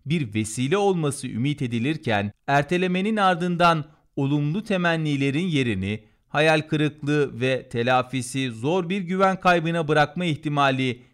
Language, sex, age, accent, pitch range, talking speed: Turkish, male, 40-59, native, 130-180 Hz, 110 wpm